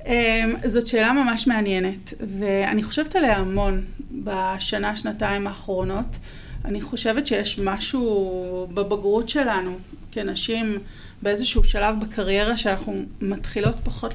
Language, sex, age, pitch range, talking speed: Hebrew, female, 30-49, 195-235 Hz, 105 wpm